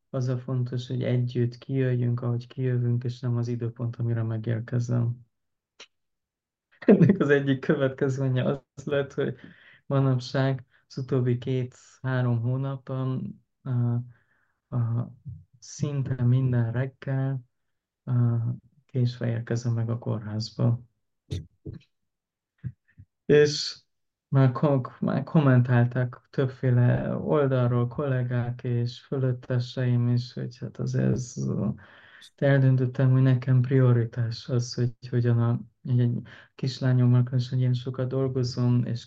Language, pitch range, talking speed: Hungarian, 120-130 Hz, 95 wpm